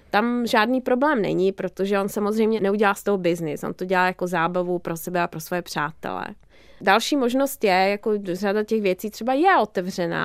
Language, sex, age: Czech, female, 20-39